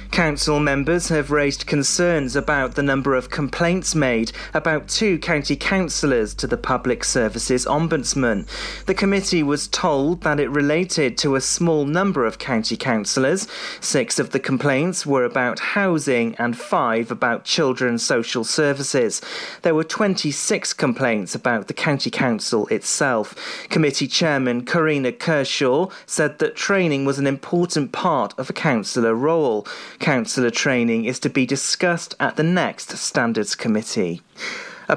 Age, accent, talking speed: 40-59, British, 140 wpm